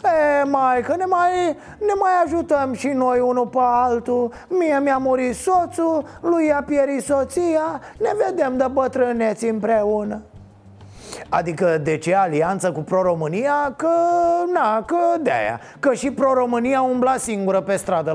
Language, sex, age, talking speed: Romanian, male, 30-49, 140 wpm